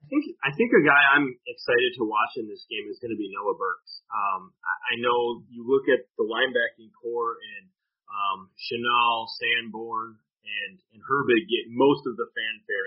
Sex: male